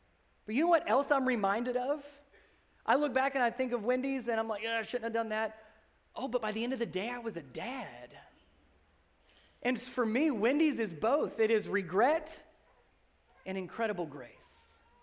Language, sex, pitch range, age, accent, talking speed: English, male, 150-215 Hz, 30-49, American, 190 wpm